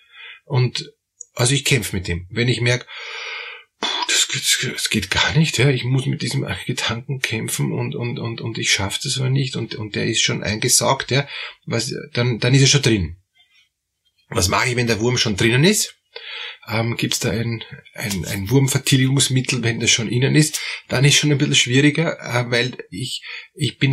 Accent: Austrian